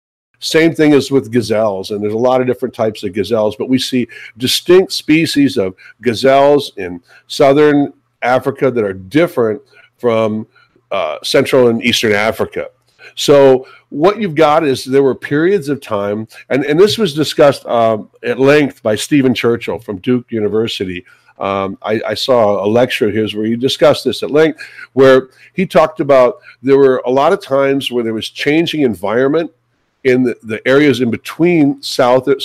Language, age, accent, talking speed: English, 50-69, American, 170 wpm